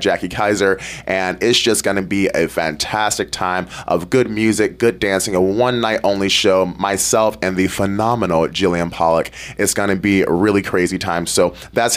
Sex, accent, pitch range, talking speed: male, American, 100-140 Hz, 185 wpm